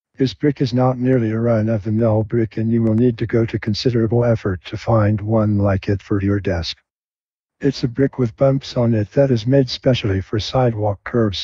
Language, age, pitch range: English, 60-79, 105-125 Hz